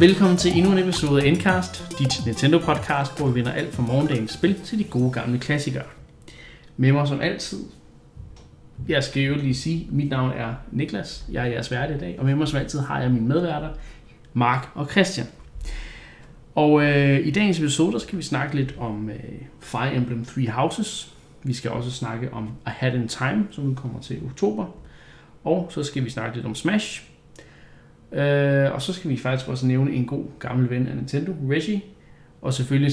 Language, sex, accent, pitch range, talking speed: Danish, male, native, 120-150 Hz, 195 wpm